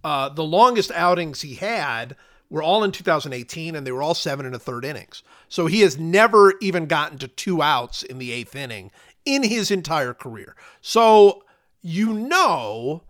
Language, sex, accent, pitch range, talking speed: English, male, American, 125-185 Hz, 180 wpm